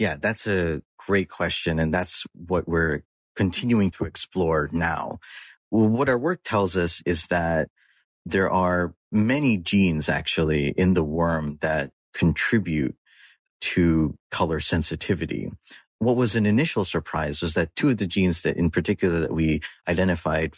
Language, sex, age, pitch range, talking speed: English, male, 30-49, 80-95 Hz, 150 wpm